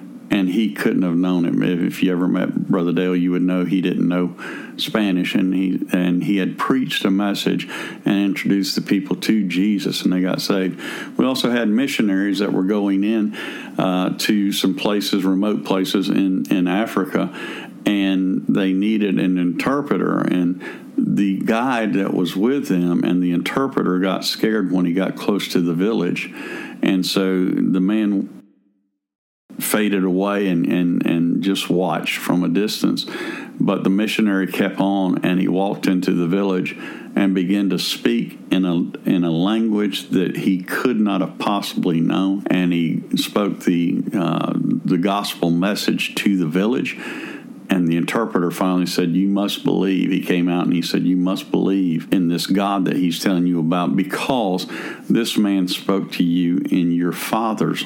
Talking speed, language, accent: 170 wpm, English, American